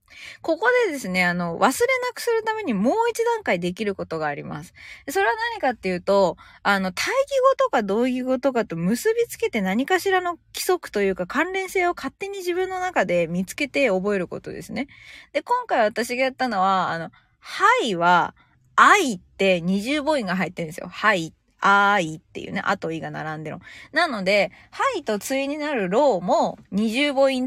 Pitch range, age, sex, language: 185-290 Hz, 20-39, female, Japanese